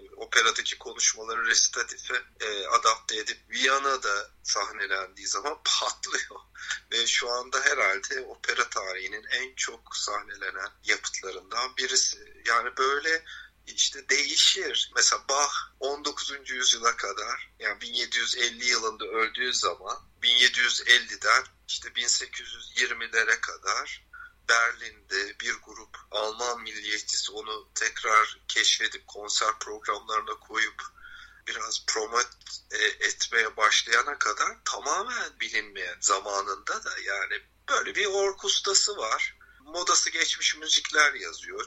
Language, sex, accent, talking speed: Turkish, male, native, 100 wpm